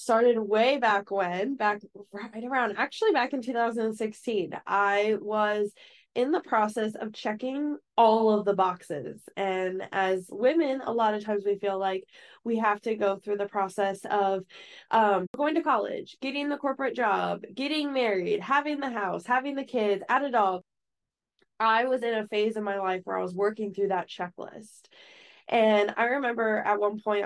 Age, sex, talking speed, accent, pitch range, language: 10-29, female, 175 wpm, American, 200-255 Hz, English